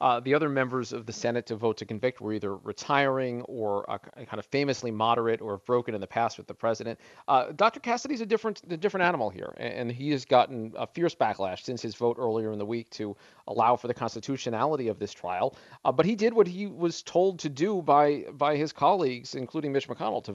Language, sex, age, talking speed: English, male, 40-59, 230 wpm